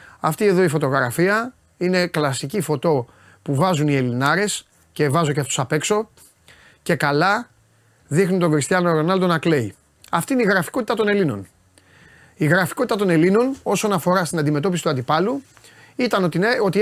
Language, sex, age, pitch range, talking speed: Greek, male, 30-49, 135-185 Hz, 155 wpm